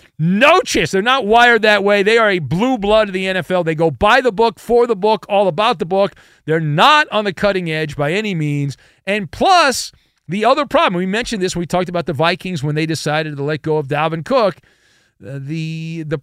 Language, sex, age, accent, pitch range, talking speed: English, male, 40-59, American, 130-200 Hz, 225 wpm